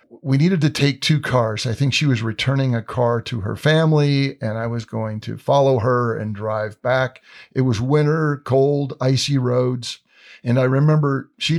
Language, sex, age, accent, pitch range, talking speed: English, male, 50-69, American, 115-140 Hz, 185 wpm